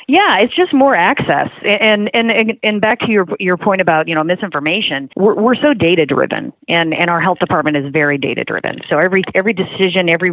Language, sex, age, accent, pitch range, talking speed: English, female, 30-49, American, 155-190 Hz, 210 wpm